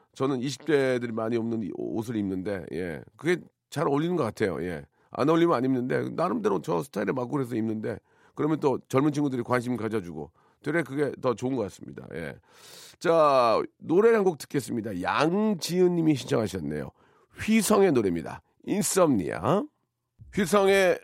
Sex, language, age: male, Korean, 40-59